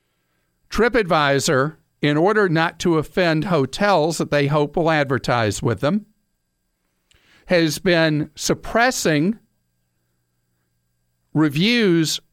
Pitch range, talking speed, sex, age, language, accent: 120-175 Hz, 90 wpm, male, 50-69, English, American